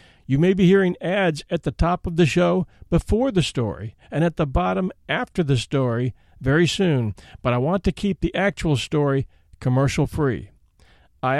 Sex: male